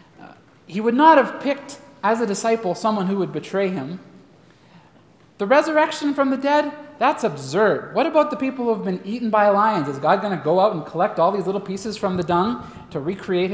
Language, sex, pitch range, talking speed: English, male, 180-235 Hz, 210 wpm